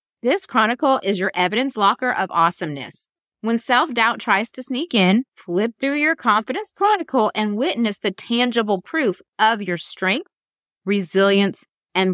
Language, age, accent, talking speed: English, 30-49, American, 145 wpm